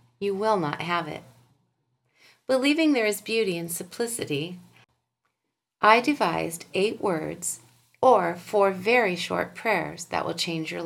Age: 30-49